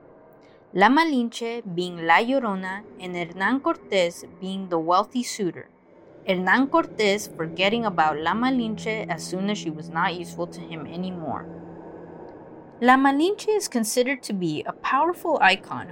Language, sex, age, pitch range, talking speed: English, female, 20-39, 175-245 Hz, 140 wpm